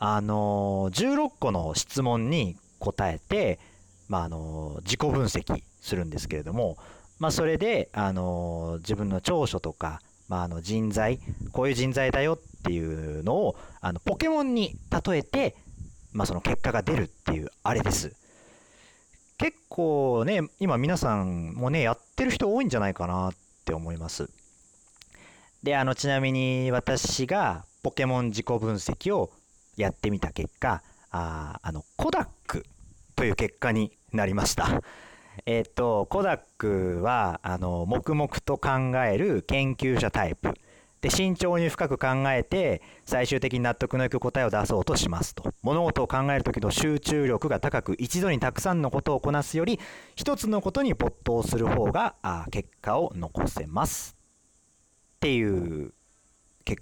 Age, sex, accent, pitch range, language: 40-59, male, native, 95-135 Hz, Japanese